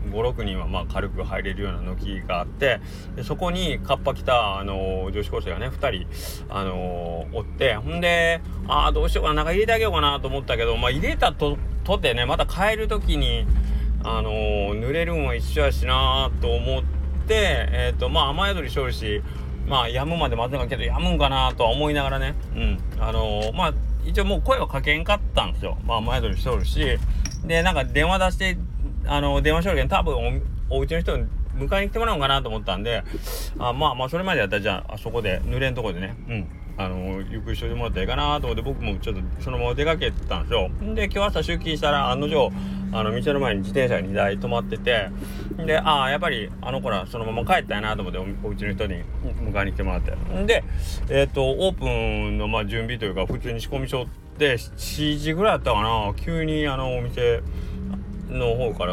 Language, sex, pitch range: Japanese, male, 85-140 Hz